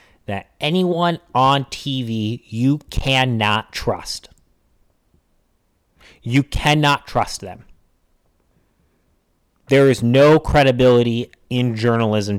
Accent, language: American, English